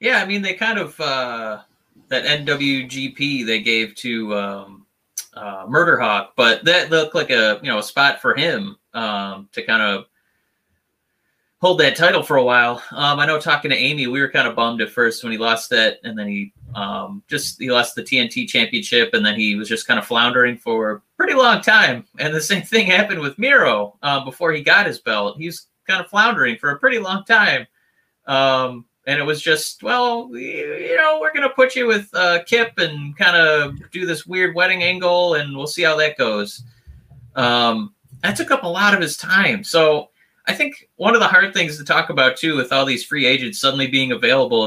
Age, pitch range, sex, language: 30-49, 125-190 Hz, male, English